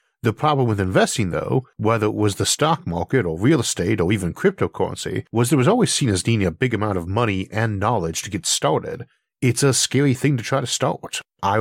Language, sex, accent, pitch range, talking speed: English, male, American, 100-130 Hz, 220 wpm